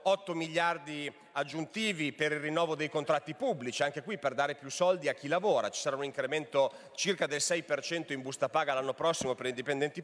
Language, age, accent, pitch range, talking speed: Italian, 40-59, native, 155-210 Hz, 195 wpm